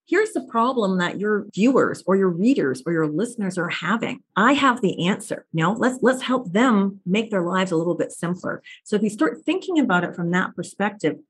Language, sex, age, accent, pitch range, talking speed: English, female, 40-59, American, 185-270 Hz, 225 wpm